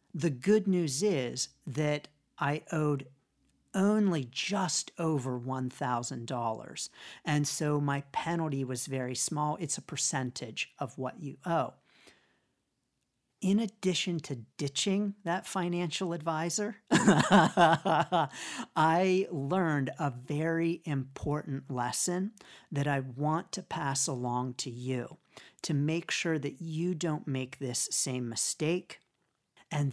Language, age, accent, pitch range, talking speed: English, 40-59, American, 140-180 Hz, 115 wpm